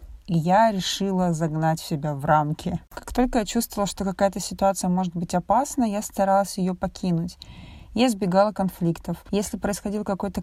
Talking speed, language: 155 wpm, Russian